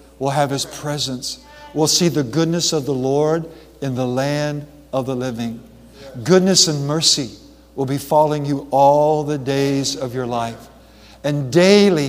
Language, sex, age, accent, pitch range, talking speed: English, male, 60-79, American, 140-175 Hz, 160 wpm